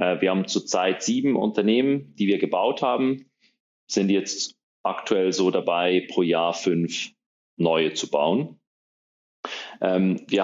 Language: German